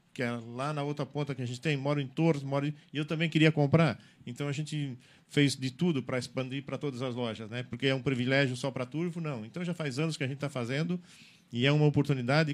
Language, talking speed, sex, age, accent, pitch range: Portuguese, 255 wpm, male, 40-59, Brazilian, 130-155 Hz